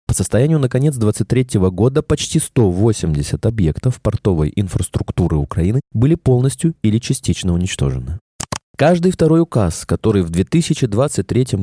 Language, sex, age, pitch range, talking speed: Russian, male, 20-39, 95-145 Hz, 120 wpm